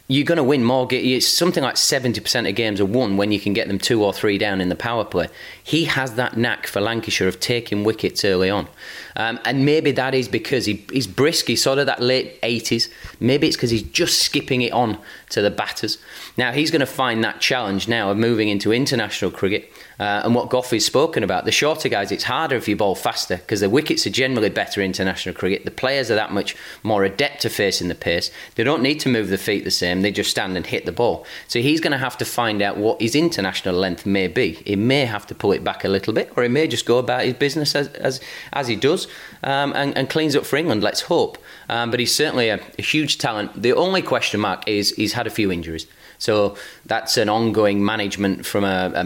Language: English